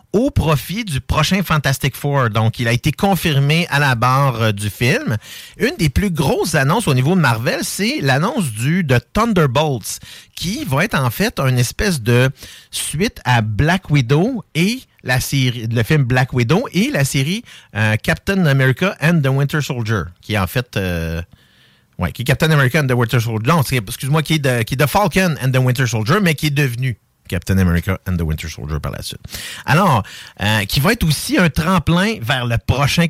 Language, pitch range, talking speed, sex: French, 115-160 Hz, 205 wpm, male